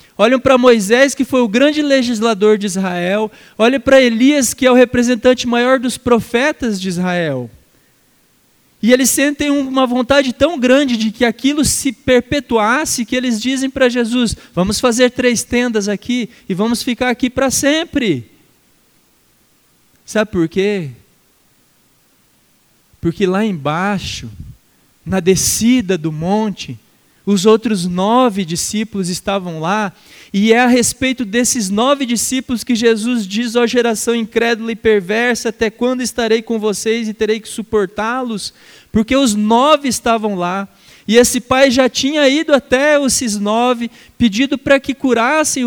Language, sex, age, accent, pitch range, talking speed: Portuguese, male, 20-39, Brazilian, 210-255 Hz, 140 wpm